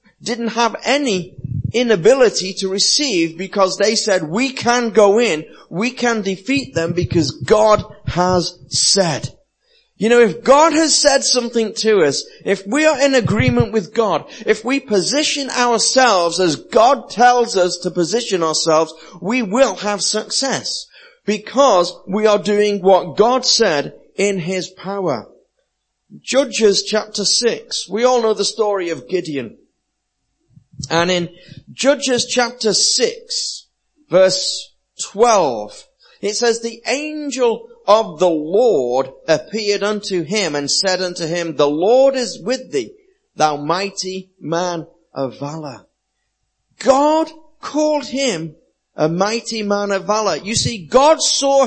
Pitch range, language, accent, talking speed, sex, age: 180-255 Hz, English, British, 135 wpm, male, 30-49